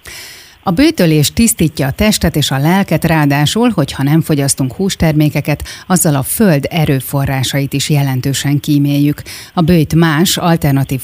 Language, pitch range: Hungarian, 140-165 Hz